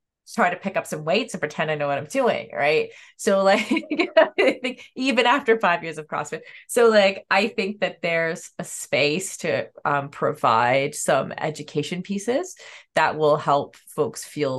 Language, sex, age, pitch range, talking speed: English, female, 20-39, 150-210 Hz, 170 wpm